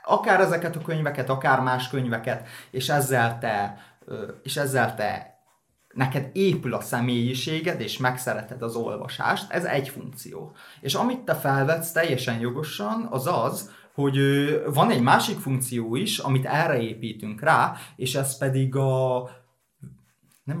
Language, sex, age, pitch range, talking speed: Hungarian, male, 30-49, 120-145 Hz, 130 wpm